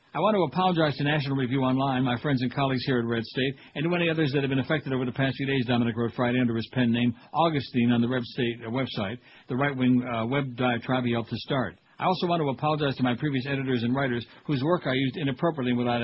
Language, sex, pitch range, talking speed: English, male, 125-150 Hz, 255 wpm